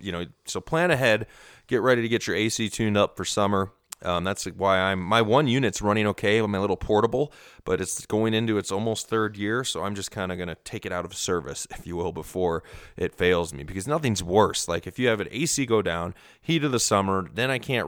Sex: male